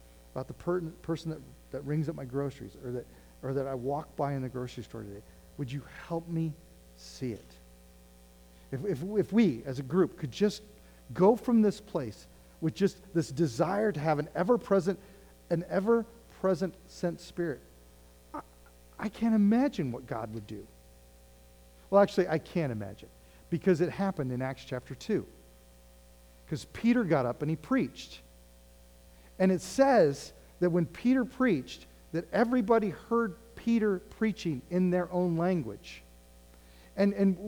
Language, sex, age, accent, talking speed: English, male, 40-59, American, 155 wpm